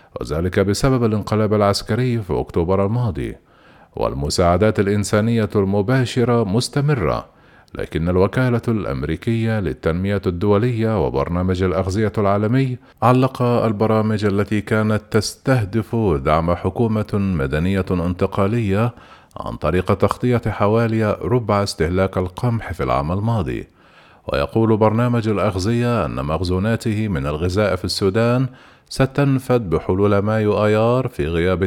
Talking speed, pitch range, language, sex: 100 wpm, 95-120 Hz, Arabic, male